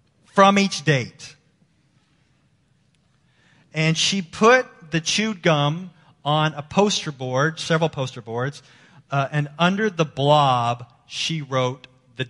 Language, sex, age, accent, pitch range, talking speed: English, male, 40-59, American, 135-175 Hz, 115 wpm